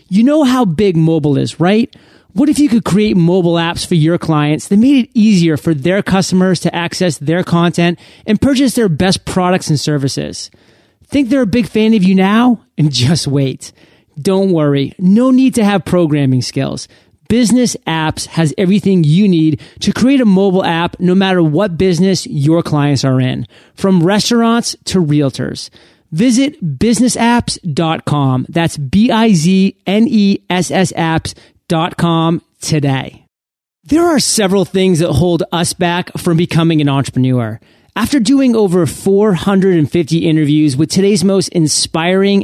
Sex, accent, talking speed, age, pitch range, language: male, American, 145 wpm, 30-49, 155-200 Hz, English